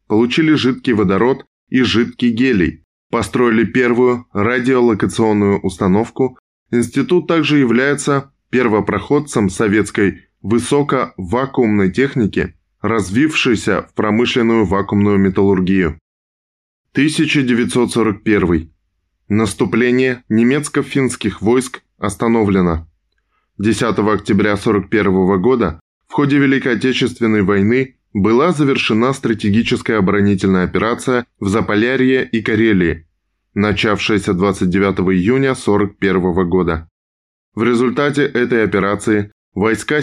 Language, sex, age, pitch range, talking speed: Russian, male, 10-29, 95-125 Hz, 80 wpm